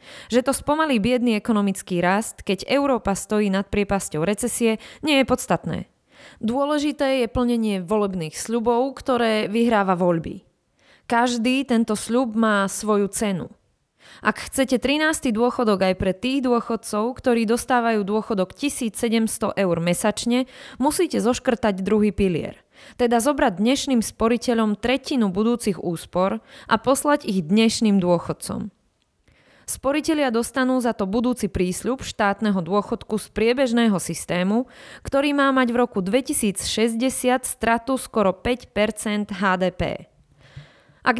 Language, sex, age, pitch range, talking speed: Slovak, female, 20-39, 200-250 Hz, 120 wpm